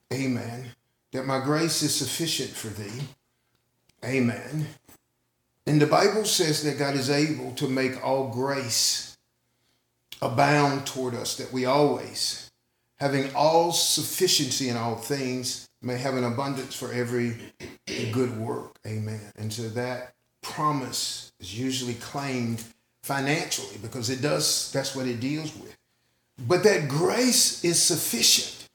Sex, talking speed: male, 130 wpm